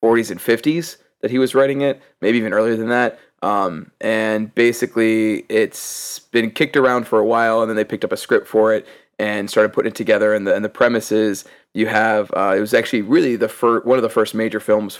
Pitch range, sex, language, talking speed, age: 105-120 Hz, male, English, 230 wpm, 20-39